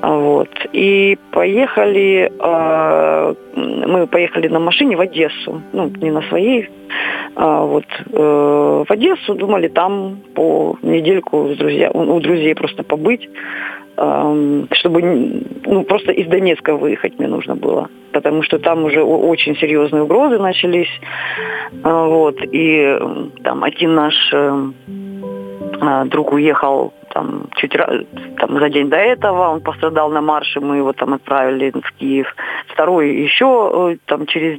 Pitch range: 145-190 Hz